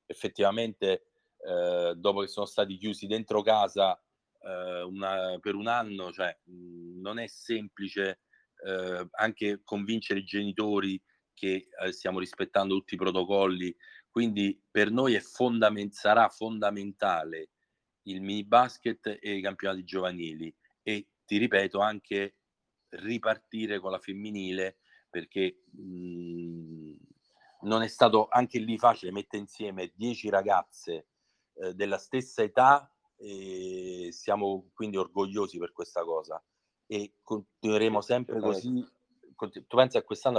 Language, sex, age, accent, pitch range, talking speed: Italian, male, 40-59, native, 95-110 Hz, 125 wpm